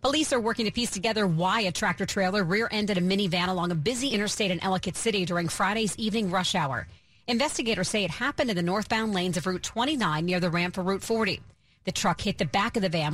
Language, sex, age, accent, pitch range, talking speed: English, female, 40-59, American, 180-235 Hz, 225 wpm